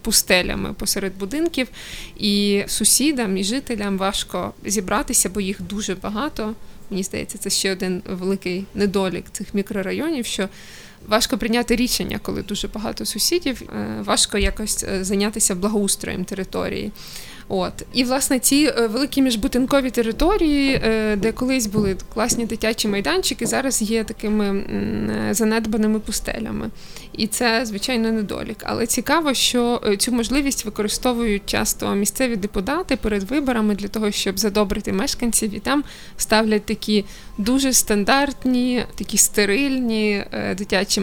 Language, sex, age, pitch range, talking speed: Ukrainian, female, 20-39, 200-240 Hz, 120 wpm